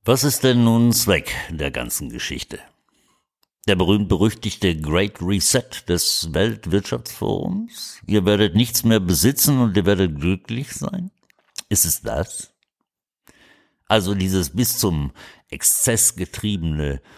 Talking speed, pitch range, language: 115 wpm, 80-110 Hz, German